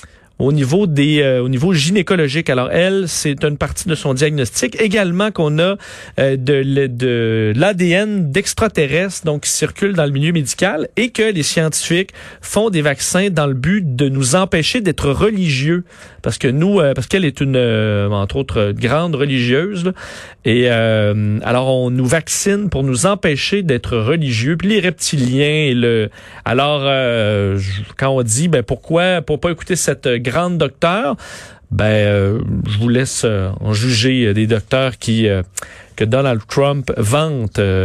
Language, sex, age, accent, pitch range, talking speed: French, male, 40-59, Canadian, 125-170 Hz, 170 wpm